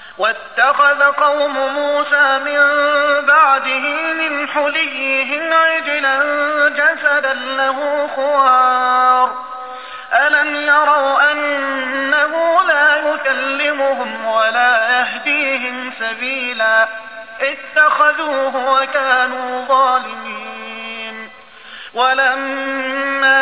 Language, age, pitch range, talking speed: Arabic, 30-49, 255-295 Hz, 60 wpm